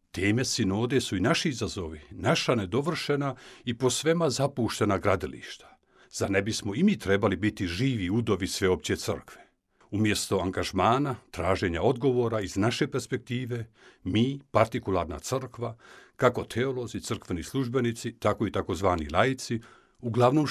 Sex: male